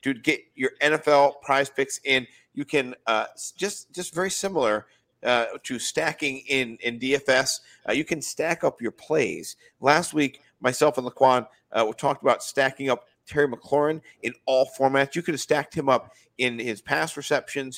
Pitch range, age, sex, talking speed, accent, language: 125-150 Hz, 50-69, male, 180 wpm, American, English